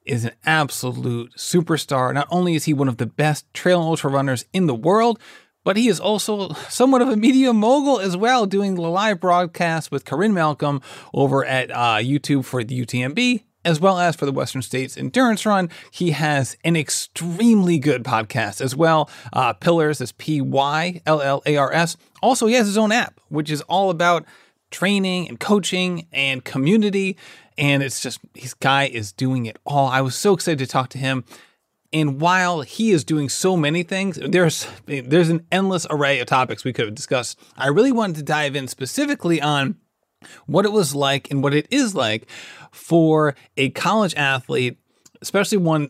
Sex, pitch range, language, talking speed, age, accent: male, 130-185 Hz, English, 190 wpm, 30-49, American